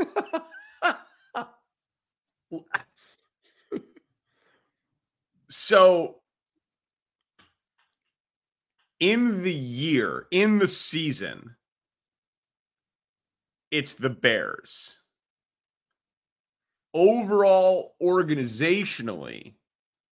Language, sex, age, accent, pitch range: English, male, 30-49, American, 120-165 Hz